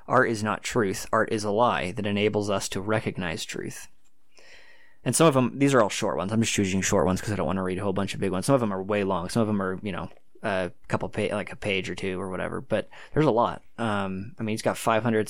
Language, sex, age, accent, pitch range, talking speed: English, male, 20-39, American, 100-120 Hz, 285 wpm